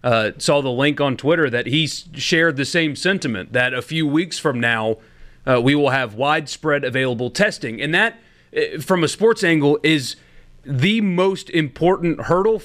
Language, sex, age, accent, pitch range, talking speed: English, male, 30-49, American, 140-175 Hz, 170 wpm